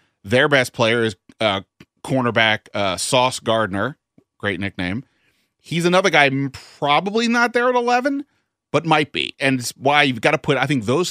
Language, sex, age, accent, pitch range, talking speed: English, male, 30-49, American, 110-140 Hz, 175 wpm